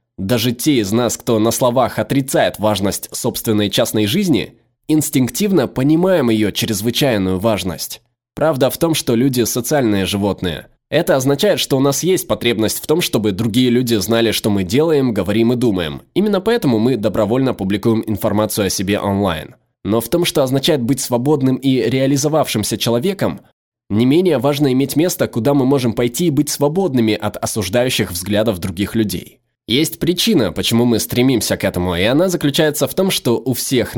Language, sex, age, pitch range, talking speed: Russian, male, 20-39, 110-140 Hz, 165 wpm